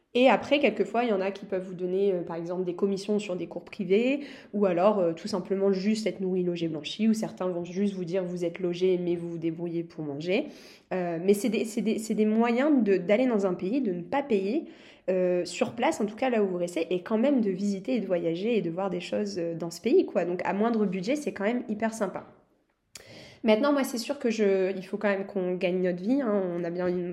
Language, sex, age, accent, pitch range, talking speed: French, female, 20-39, French, 180-220 Hz, 255 wpm